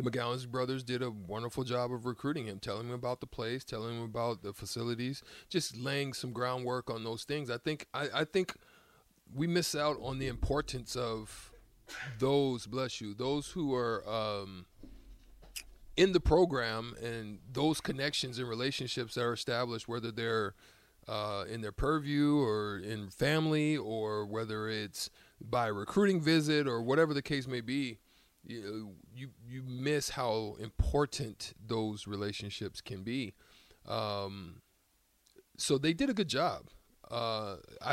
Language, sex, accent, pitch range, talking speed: English, male, American, 110-140 Hz, 150 wpm